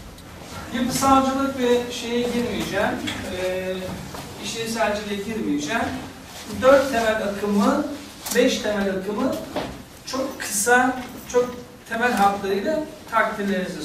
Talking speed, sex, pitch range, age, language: 80 wpm, male, 185-230 Hz, 60-79, Turkish